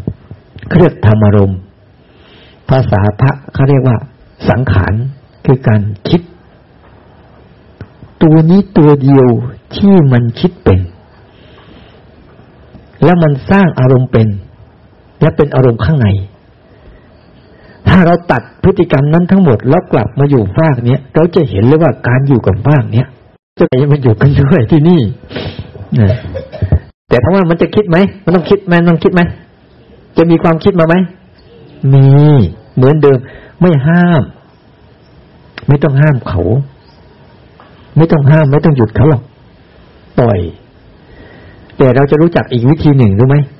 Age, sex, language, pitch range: 60-79, male, Thai, 115-160 Hz